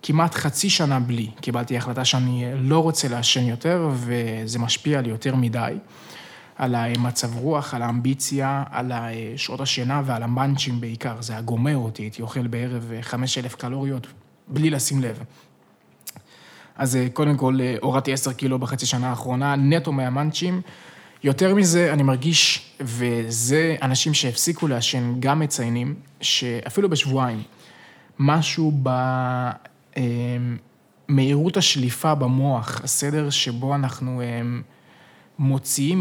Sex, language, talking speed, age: male, Hebrew, 120 wpm, 20-39